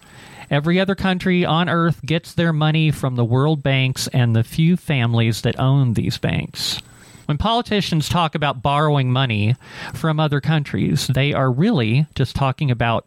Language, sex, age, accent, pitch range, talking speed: English, male, 40-59, American, 120-160 Hz, 160 wpm